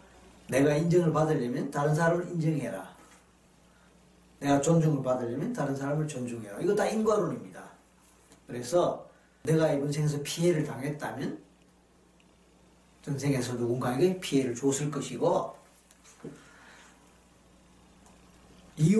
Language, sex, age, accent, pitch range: Korean, male, 40-59, native, 115-165 Hz